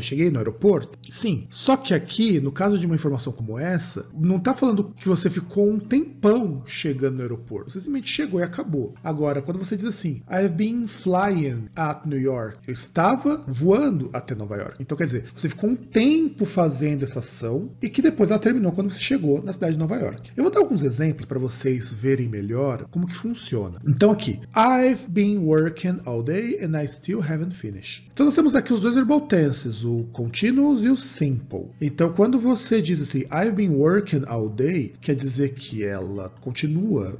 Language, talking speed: Portuguese, 195 wpm